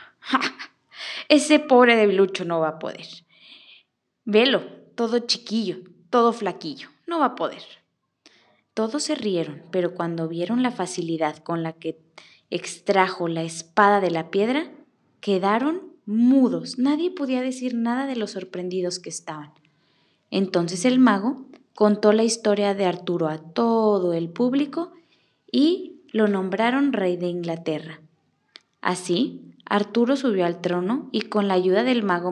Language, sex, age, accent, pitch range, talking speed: Spanish, female, 20-39, Mexican, 165-240 Hz, 135 wpm